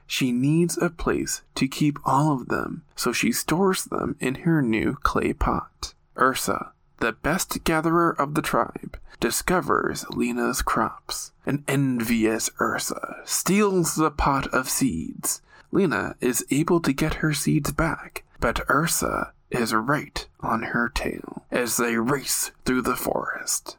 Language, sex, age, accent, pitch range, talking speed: English, male, 20-39, American, 130-170 Hz, 145 wpm